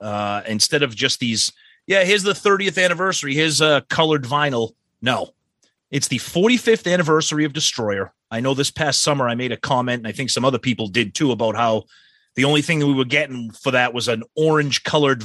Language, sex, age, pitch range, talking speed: English, male, 30-49, 115-155 Hz, 210 wpm